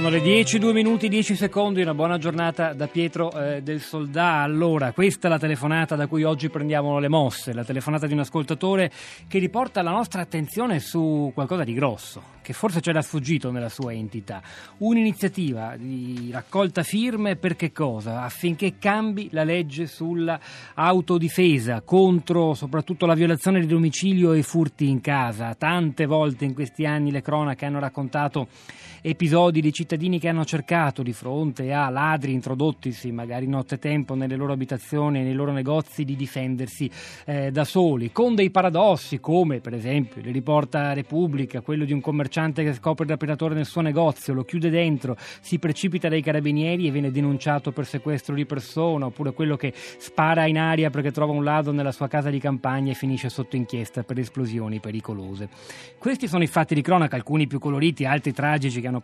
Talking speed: 180 wpm